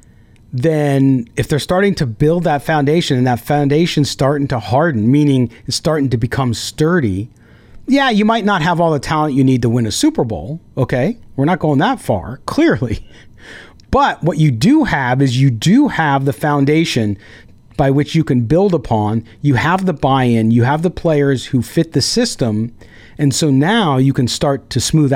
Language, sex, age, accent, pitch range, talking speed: English, male, 40-59, American, 120-155 Hz, 190 wpm